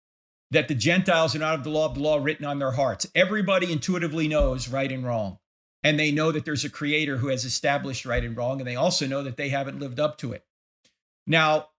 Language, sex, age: English, male, 50-69